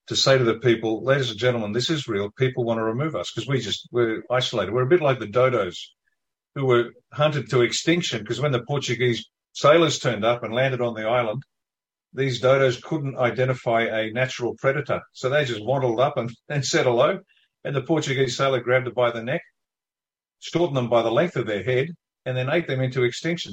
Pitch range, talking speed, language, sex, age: 115-135 Hz, 210 wpm, English, male, 50-69